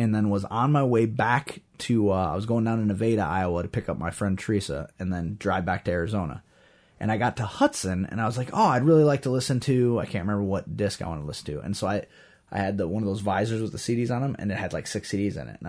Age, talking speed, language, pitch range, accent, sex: 20-39, 300 wpm, English, 100-135 Hz, American, male